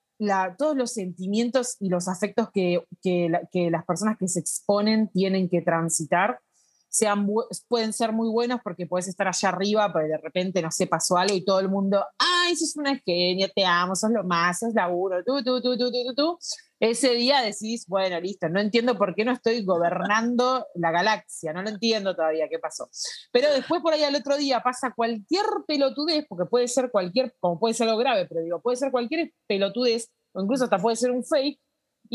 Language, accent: Spanish, Argentinian